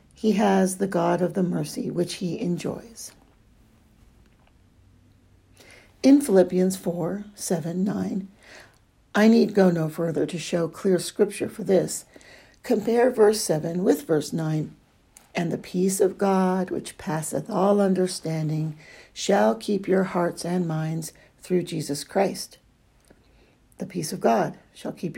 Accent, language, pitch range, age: American, English, 160-205 Hz, 60-79